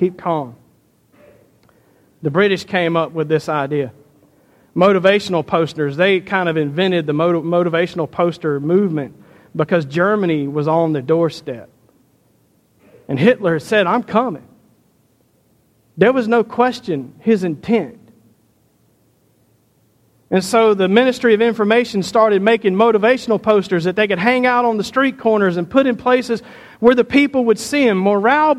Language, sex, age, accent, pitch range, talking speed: English, male, 40-59, American, 180-255 Hz, 140 wpm